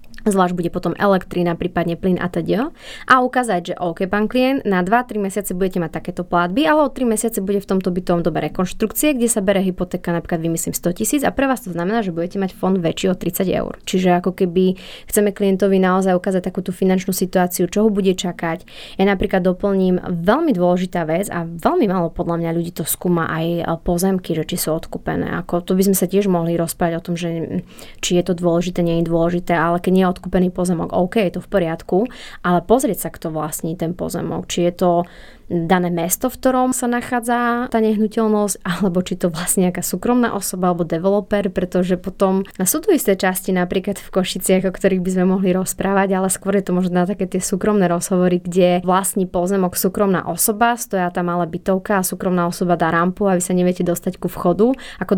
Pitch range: 175-205 Hz